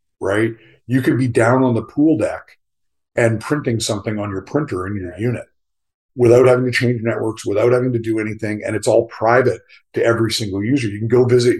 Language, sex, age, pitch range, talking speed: English, male, 50-69, 110-130 Hz, 205 wpm